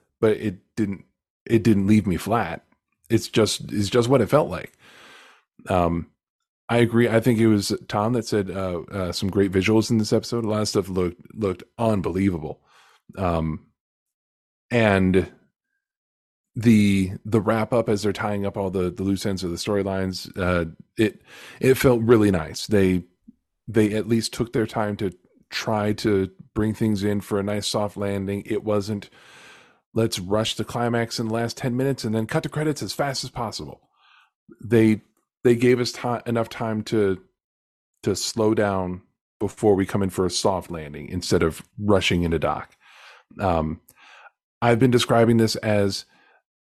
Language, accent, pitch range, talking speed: English, American, 95-120 Hz, 170 wpm